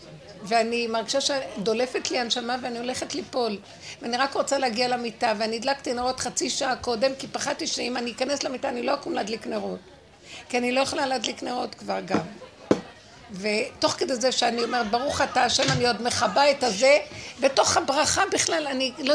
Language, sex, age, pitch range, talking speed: Hebrew, female, 60-79, 220-280 Hz, 175 wpm